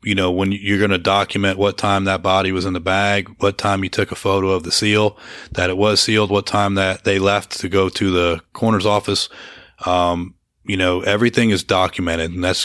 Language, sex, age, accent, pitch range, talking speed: English, male, 30-49, American, 90-100 Hz, 225 wpm